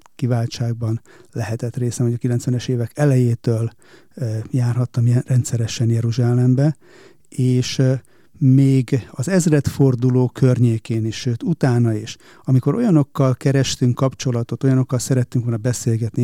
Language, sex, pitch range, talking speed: Hungarian, male, 115-130 Hz, 105 wpm